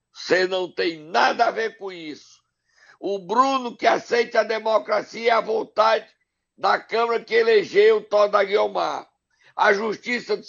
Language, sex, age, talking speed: Portuguese, male, 60-79, 150 wpm